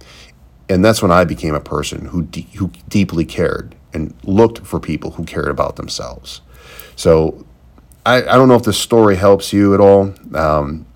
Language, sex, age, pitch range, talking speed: English, male, 40-59, 70-95 Hz, 180 wpm